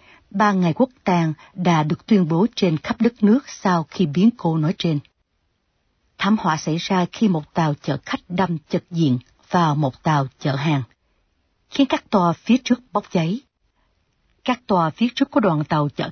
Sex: female